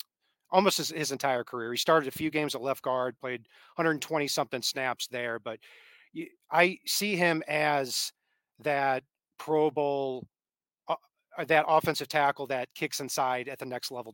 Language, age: English, 40-59